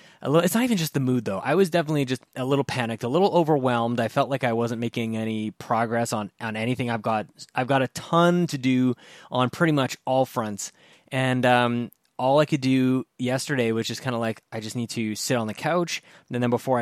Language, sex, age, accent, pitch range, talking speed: English, male, 20-39, American, 120-155 Hz, 235 wpm